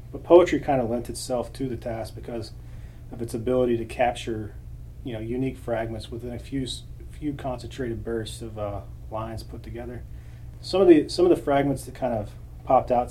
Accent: American